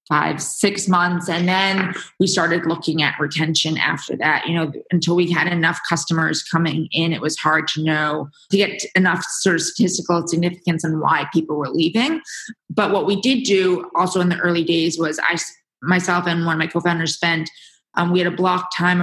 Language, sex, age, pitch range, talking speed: English, female, 20-39, 165-185 Hz, 200 wpm